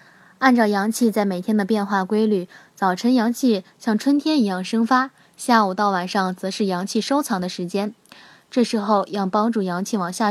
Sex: female